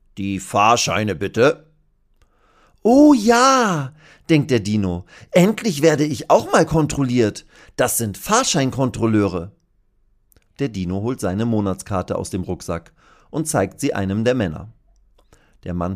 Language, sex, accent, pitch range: German, male, German, 95-145 Hz